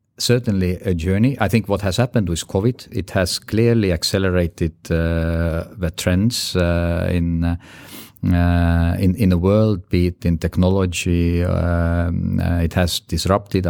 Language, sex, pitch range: English, male, 85-105 Hz